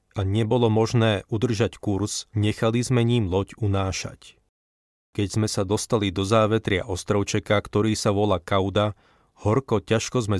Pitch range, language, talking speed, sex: 100-115 Hz, Slovak, 140 wpm, male